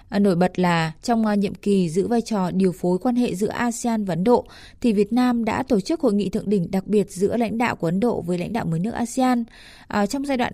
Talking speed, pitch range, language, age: 255 wpm, 195-240 Hz, Vietnamese, 20-39